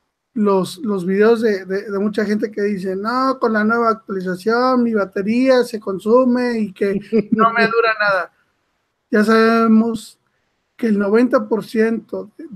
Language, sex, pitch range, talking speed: Spanish, male, 200-230 Hz, 145 wpm